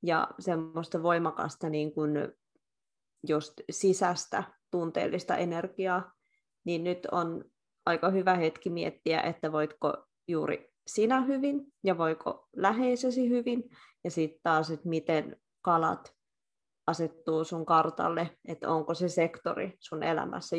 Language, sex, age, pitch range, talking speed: Finnish, female, 20-39, 165-200 Hz, 110 wpm